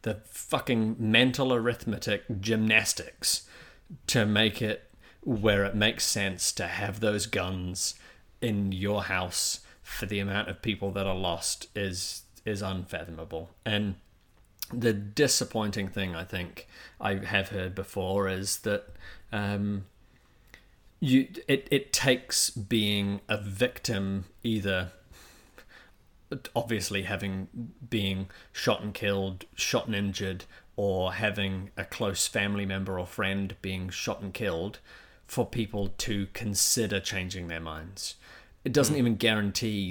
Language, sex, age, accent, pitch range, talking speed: English, male, 30-49, British, 95-110 Hz, 125 wpm